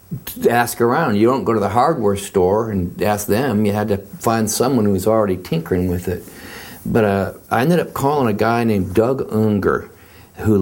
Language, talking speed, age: English, 200 wpm, 50-69